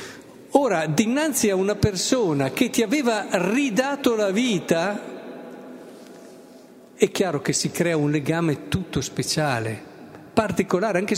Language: Italian